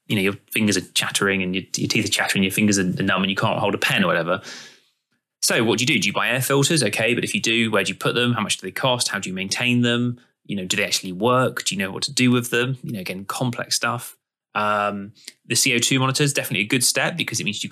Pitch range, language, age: 100-130 Hz, English, 20-39